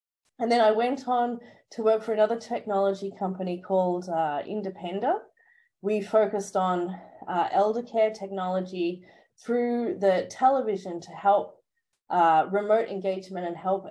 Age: 30-49